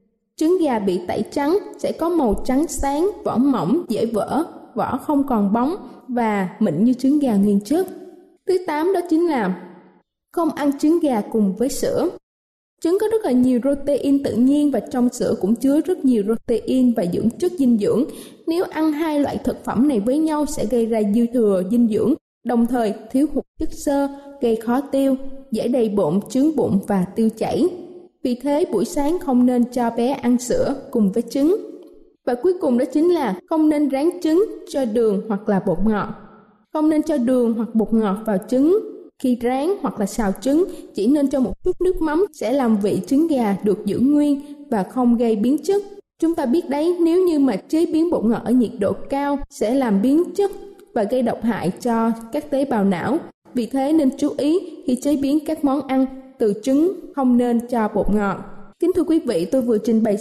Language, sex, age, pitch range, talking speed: Vietnamese, female, 20-39, 225-310 Hz, 210 wpm